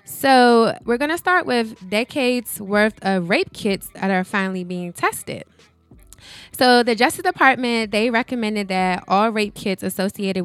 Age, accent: 10-29, American